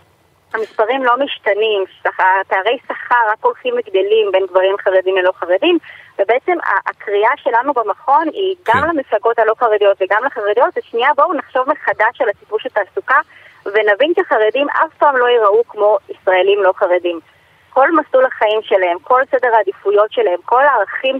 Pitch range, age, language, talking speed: 200-295 Hz, 20-39, Hebrew, 155 wpm